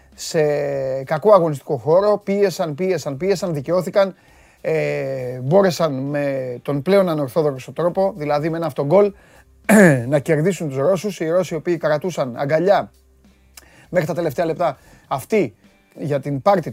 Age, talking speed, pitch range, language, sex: 30-49, 135 wpm, 140-180 Hz, Greek, male